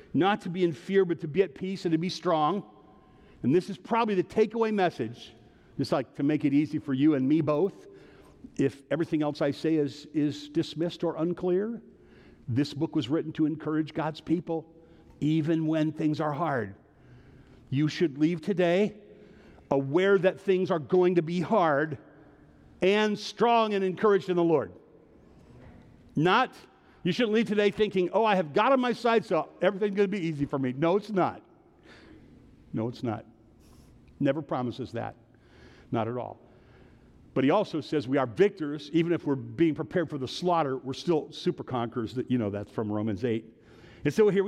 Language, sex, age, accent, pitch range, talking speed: English, male, 50-69, American, 145-190 Hz, 180 wpm